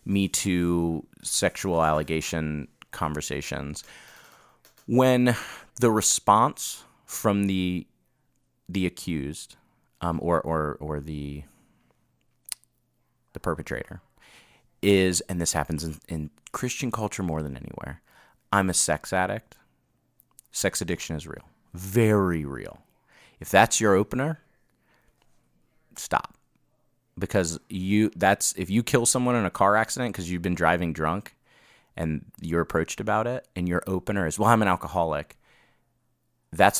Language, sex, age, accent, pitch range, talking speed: English, male, 30-49, American, 80-100 Hz, 120 wpm